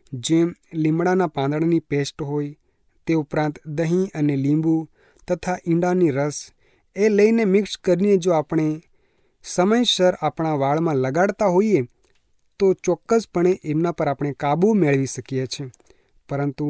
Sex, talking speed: male, 110 wpm